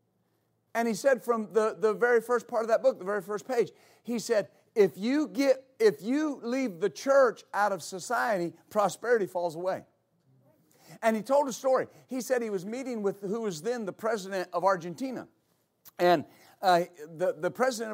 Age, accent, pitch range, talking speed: 50-69, American, 190-240 Hz, 185 wpm